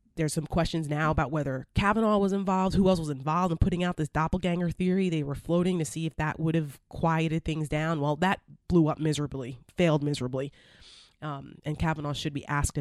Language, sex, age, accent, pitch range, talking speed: English, female, 30-49, American, 150-180 Hz, 205 wpm